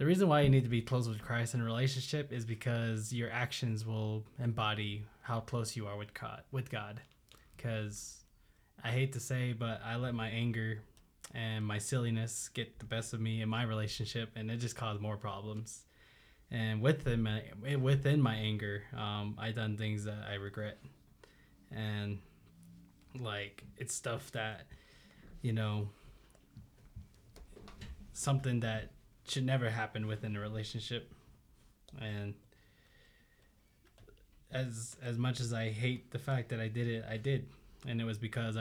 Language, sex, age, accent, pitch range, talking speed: English, male, 20-39, American, 105-120 Hz, 155 wpm